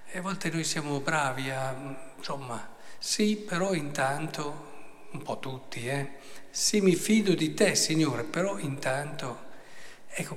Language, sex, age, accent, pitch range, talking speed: Italian, male, 50-69, native, 135-165 Hz, 135 wpm